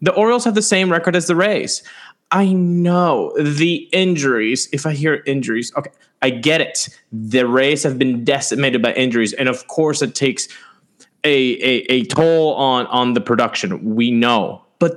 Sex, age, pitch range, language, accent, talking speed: male, 20-39, 140-190 Hz, English, American, 175 wpm